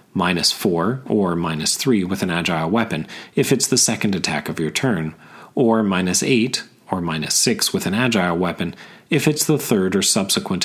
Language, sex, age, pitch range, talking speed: English, male, 30-49, 95-140 Hz, 185 wpm